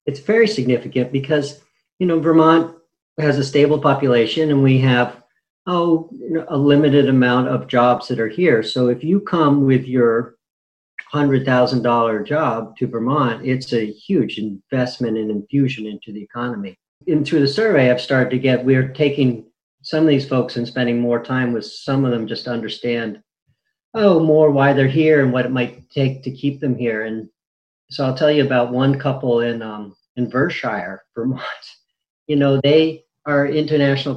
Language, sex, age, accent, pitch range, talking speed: English, male, 50-69, American, 120-145 Hz, 175 wpm